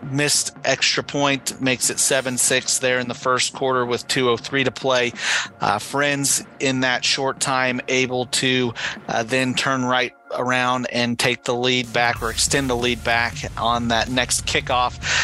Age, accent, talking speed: 40-59, American, 175 wpm